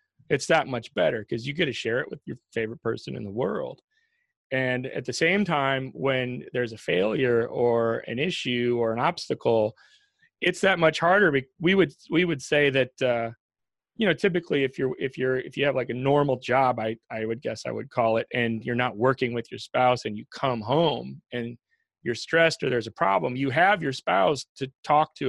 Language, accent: English, American